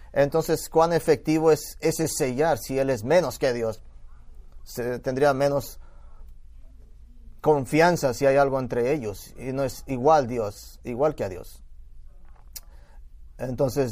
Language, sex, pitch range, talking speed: English, male, 115-155 Hz, 135 wpm